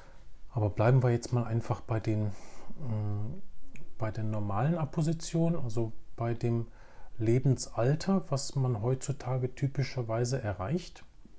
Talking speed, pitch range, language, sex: 100 wpm, 105-130 Hz, German, male